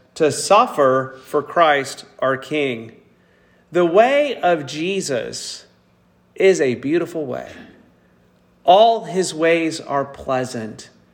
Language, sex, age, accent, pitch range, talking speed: English, male, 40-59, American, 105-140 Hz, 100 wpm